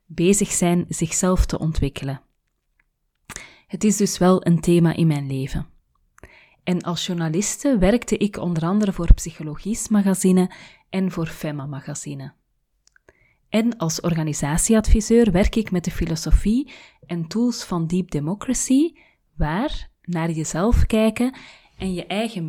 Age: 30-49